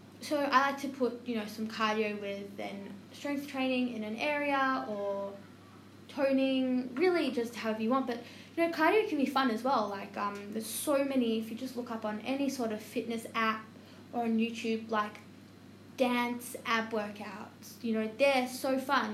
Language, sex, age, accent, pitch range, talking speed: English, female, 10-29, Australian, 215-265 Hz, 190 wpm